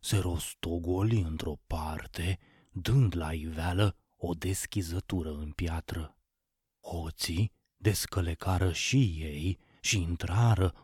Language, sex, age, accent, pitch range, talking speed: Romanian, male, 30-49, native, 85-110 Hz, 95 wpm